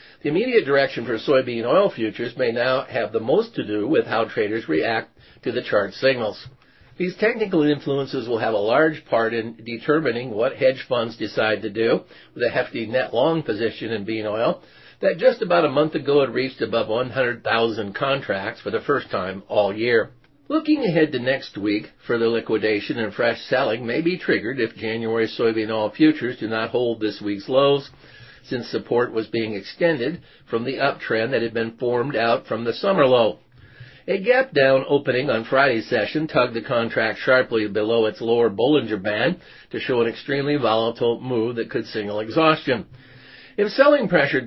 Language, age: English, 50-69